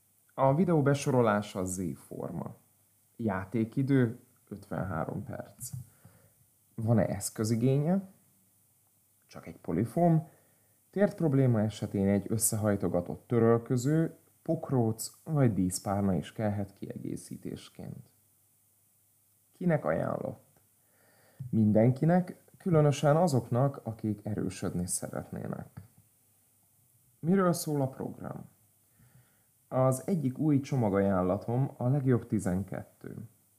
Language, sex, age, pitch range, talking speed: Hungarian, male, 30-49, 100-125 Hz, 75 wpm